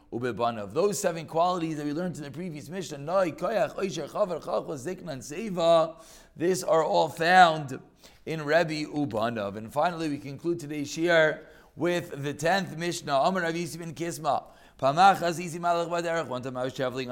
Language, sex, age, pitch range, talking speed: English, male, 30-49, 150-185 Hz, 110 wpm